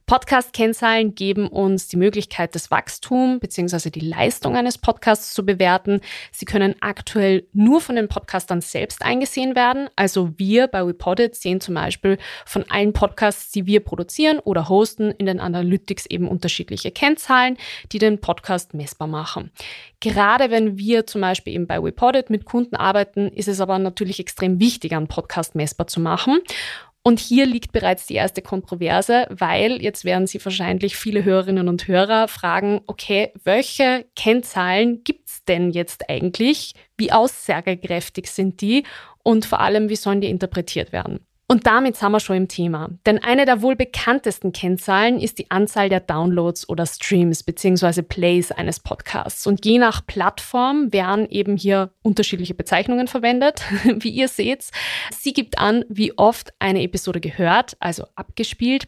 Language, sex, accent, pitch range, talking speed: German, female, German, 185-235 Hz, 160 wpm